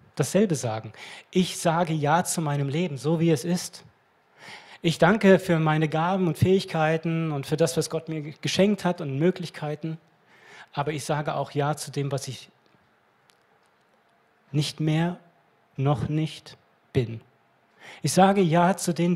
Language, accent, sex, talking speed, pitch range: German, German, male, 150 wpm, 140-175 Hz